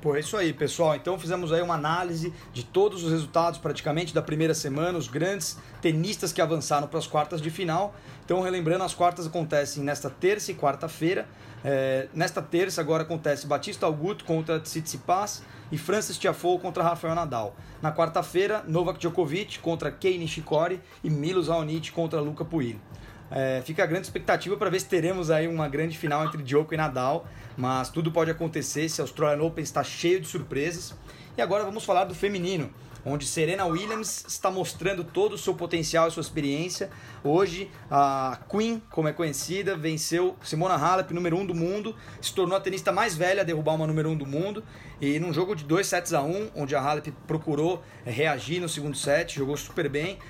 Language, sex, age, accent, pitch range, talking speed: Portuguese, male, 20-39, Brazilian, 145-180 Hz, 190 wpm